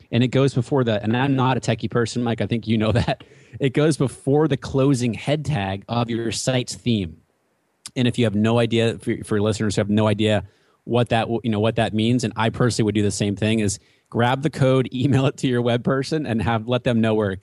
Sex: male